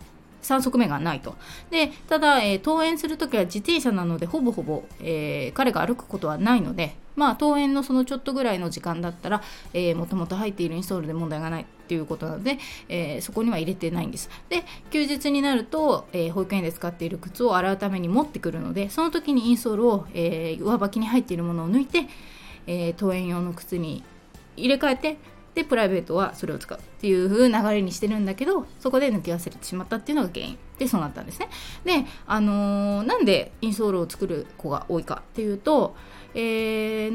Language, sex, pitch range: Japanese, female, 170-255 Hz